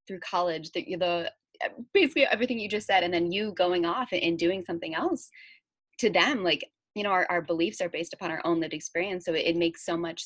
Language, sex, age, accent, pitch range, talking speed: English, female, 20-39, American, 170-275 Hz, 220 wpm